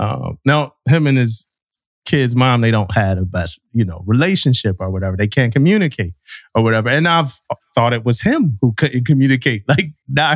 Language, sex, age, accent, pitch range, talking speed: English, male, 20-39, American, 120-155 Hz, 190 wpm